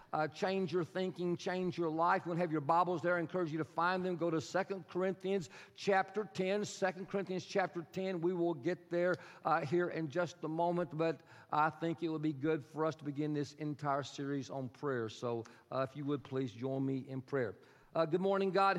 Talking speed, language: 220 wpm, English